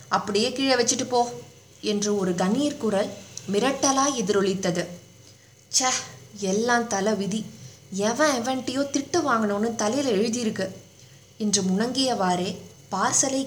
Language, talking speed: Tamil, 100 wpm